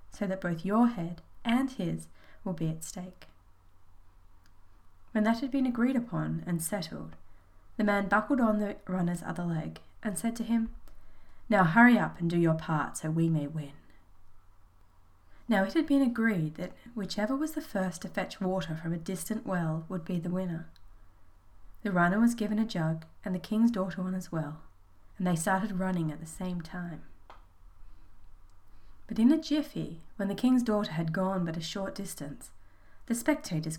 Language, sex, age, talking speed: English, female, 20-39, 180 wpm